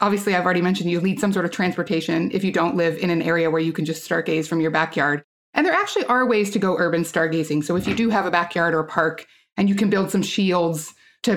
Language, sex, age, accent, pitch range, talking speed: English, female, 30-49, American, 165-210 Hz, 270 wpm